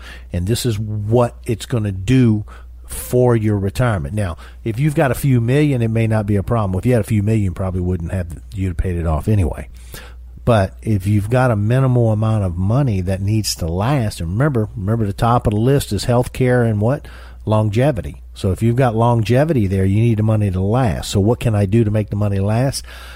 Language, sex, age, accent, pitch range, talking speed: English, male, 50-69, American, 90-120 Hz, 230 wpm